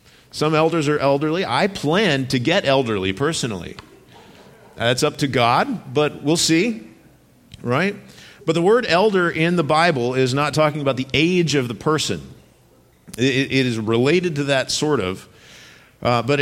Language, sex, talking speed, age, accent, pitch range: English, male, 160 wpm, 50-69, American, 115-145 Hz